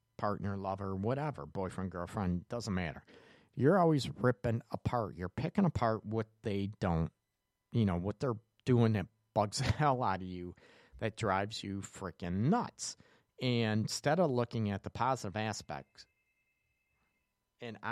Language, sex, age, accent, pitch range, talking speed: English, male, 40-59, American, 100-125 Hz, 145 wpm